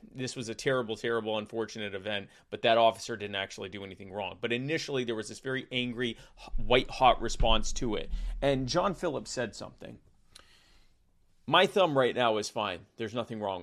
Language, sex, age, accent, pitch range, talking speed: English, male, 30-49, American, 115-145 Hz, 175 wpm